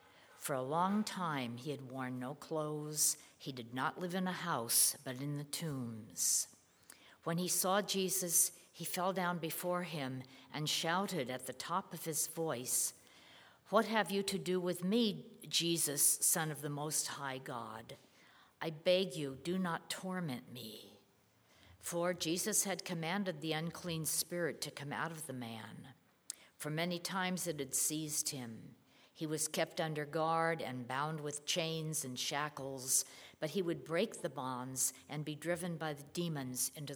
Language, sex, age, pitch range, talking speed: English, female, 60-79, 135-175 Hz, 165 wpm